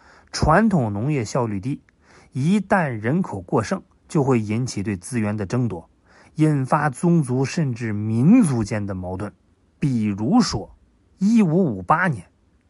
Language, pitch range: Chinese, 110-170 Hz